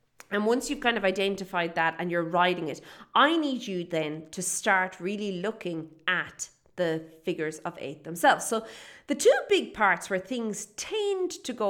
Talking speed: 180 wpm